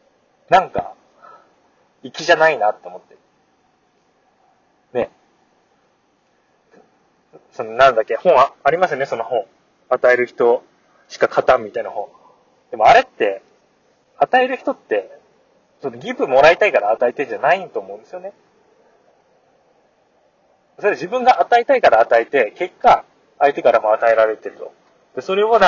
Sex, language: male, Japanese